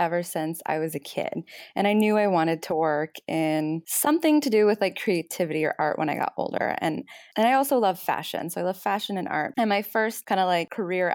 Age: 20-39